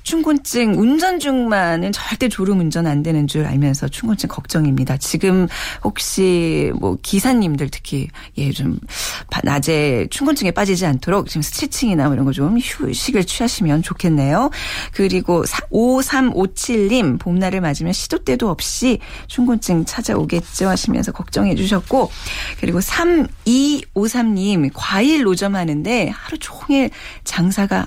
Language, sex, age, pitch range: Korean, female, 40-59, 160-240 Hz